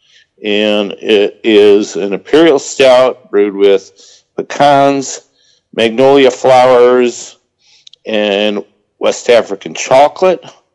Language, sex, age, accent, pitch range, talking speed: English, male, 50-69, American, 110-170 Hz, 85 wpm